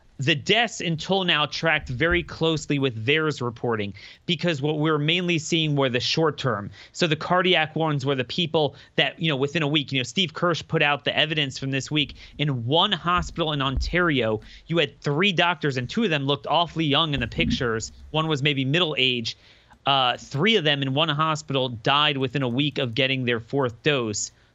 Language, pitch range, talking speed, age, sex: English, 125-160 Hz, 205 wpm, 30-49, male